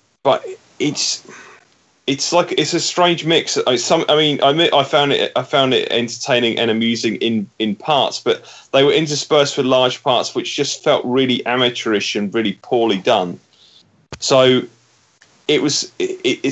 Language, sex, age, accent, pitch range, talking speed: English, male, 30-49, British, 120-155 Hz, 170 wpm